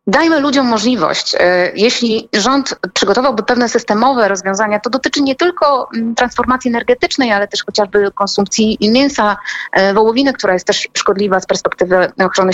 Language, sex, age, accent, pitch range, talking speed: Polish, female, 30-49, native, 180-230 Hz, 135 wpm